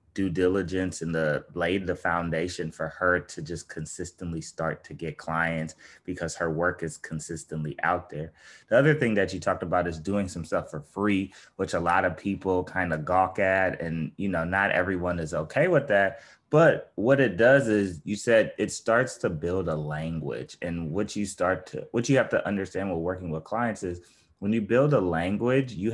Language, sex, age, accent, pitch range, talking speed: English, male, 20-39, American, 80-100 Hz, 205 wpm